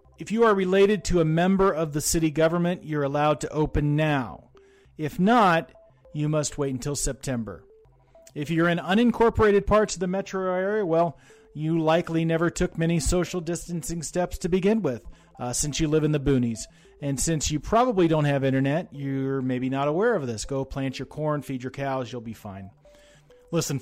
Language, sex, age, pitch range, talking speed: English, male, 40-59, 130-165 Hz, 190 wpm